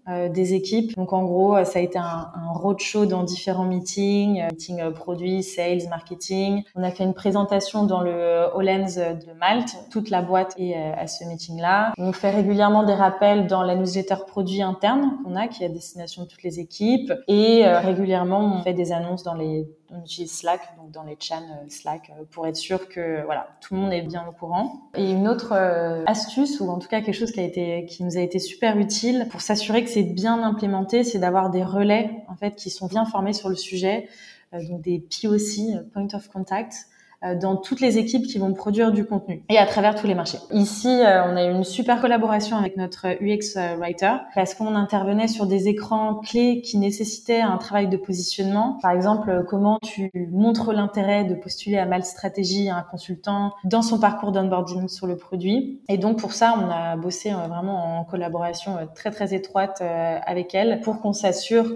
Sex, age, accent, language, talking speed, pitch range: female, 20-39, French, French, 205 wpm, 180-210 Hz